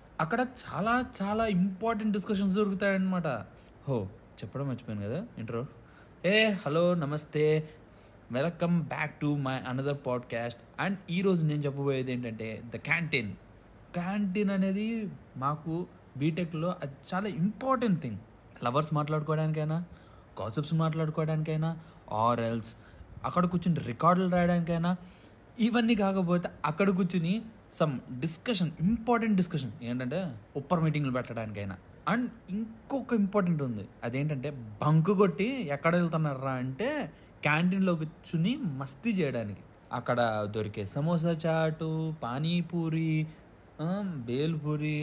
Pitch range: 130-185 Hz